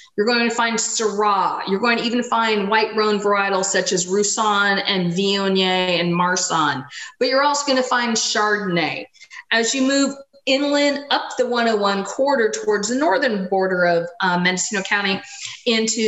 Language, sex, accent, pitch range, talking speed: English, female, American, 190-250 Hz, 165 wpm